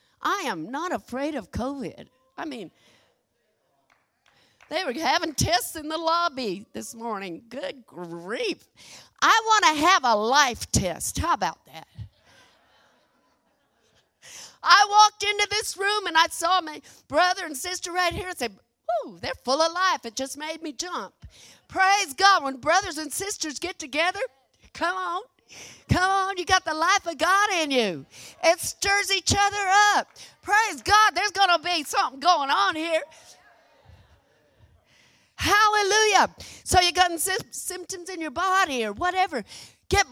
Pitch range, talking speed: 300-380 Hz, 150 wpm